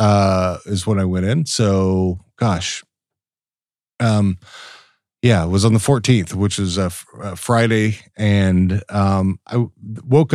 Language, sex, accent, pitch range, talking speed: English, male, American, 95-120 Hz, 150 wpm